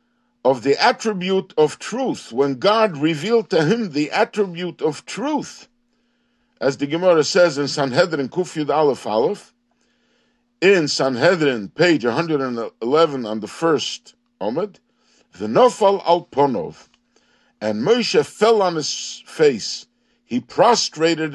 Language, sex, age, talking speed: English, male, 60-79, 115 wpm